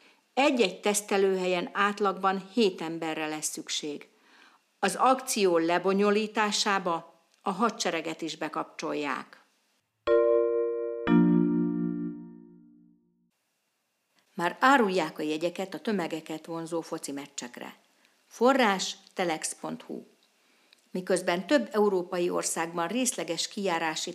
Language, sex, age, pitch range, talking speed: Hungarian, female, 50-69, 165-200 Hz, 75 wpm